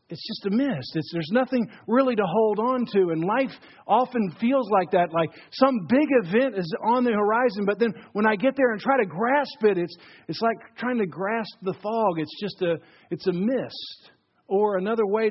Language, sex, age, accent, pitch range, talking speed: English, male, 50-69, American, 135-215 Hz, 210 wpm